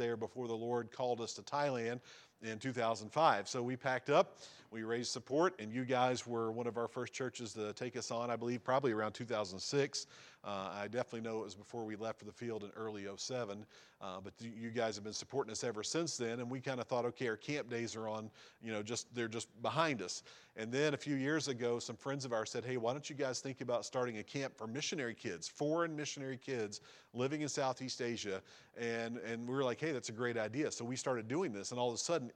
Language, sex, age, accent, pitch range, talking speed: English, male, 40-59, American, 115-140 Hz, 245 wpm